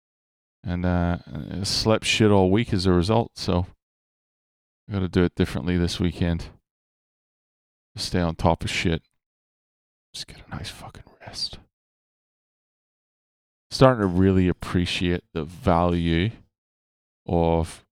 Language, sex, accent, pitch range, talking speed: English, male, American, 85-105 Hz, 125 wpm